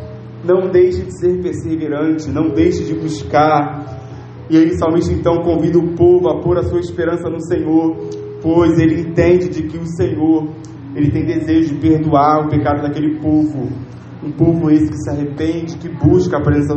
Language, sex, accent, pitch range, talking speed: Portuguese, male, Brazilian, 125-155 Hz, 180 wpm